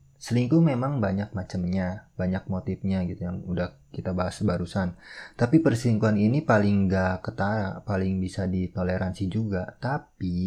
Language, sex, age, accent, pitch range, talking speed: Indonesian, male, 30-49, native, 90-105 Hz, 130 wpm